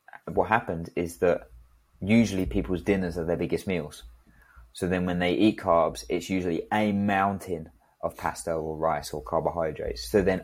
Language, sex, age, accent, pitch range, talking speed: English, male, 20-39, British, 85-100 Hz, 165 wpm